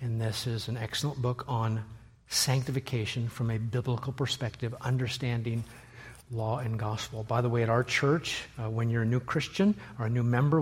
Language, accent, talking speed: English, American, 180 wpm